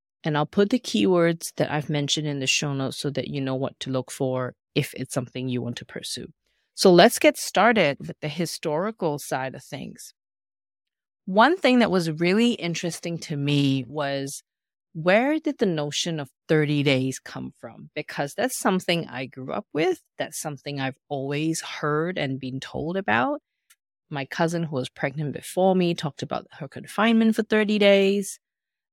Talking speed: 175 wpm